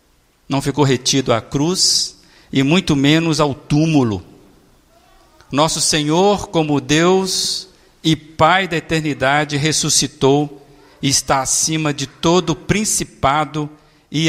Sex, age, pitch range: male, 50-69, 120-160 Hz